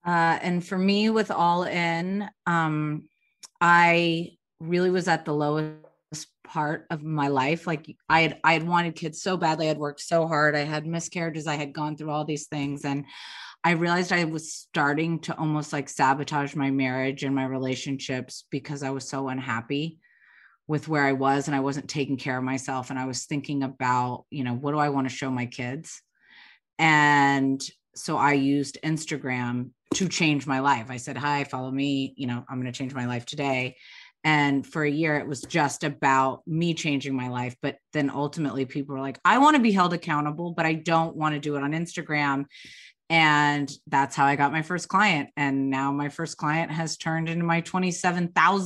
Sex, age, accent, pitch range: female, 30-49, American, 140-165 Hz